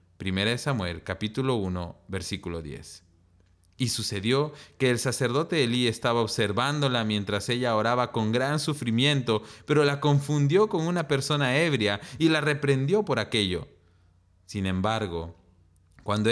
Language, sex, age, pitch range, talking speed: Spanish, male, 30-49, 90-140 Hz, 130 wpm